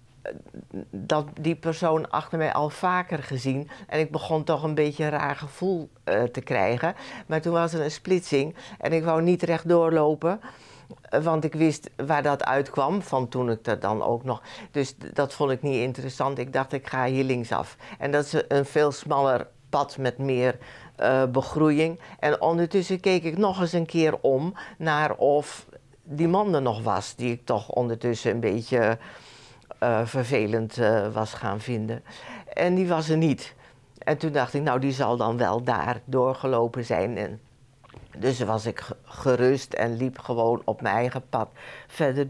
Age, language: 60-79, Dutch